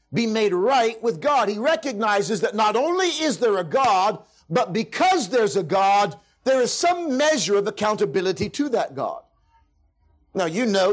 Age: 50-69